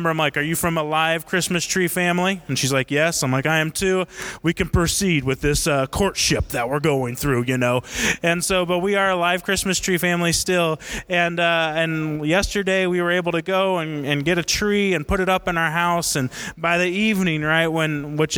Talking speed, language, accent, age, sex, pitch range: 230 wpm, English, American, 20-39, male, 150-185 Hz